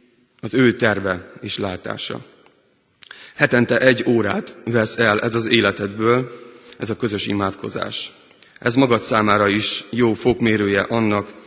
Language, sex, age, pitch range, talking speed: Hungarian, male, 30-49, 105-115 Hz, 125 wpm